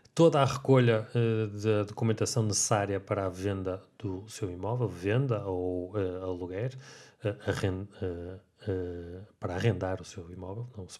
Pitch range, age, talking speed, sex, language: 95-120 Hz, 30-49, 155 wpm, male, Portuguese